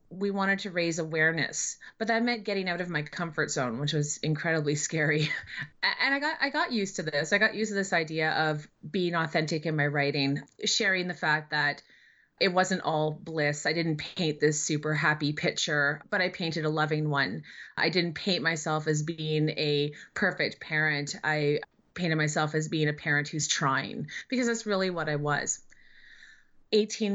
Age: 30-49